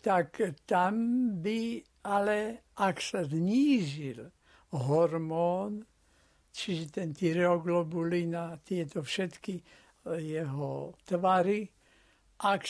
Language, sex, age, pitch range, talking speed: Slovak, male, 60-79, 165-195 Hz, 75 wpm